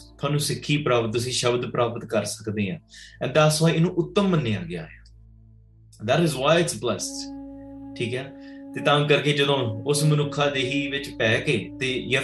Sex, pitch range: male, 120-155 Hz